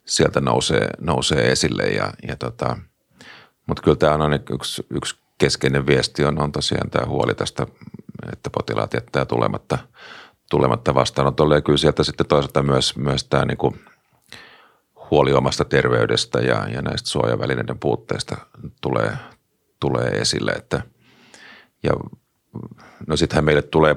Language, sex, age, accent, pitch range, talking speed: Finnish, male, 40-59, native, 65-75 Hz, 135 wpm